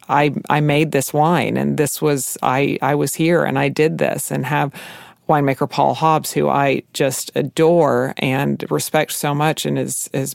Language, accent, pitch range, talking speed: English, American, 140-170 Hz, 185 wpm